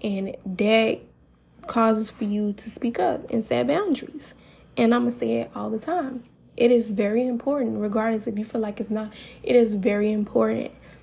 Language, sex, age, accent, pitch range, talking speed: English, female, 10-29, American, 210-235 Hz, 190 wpm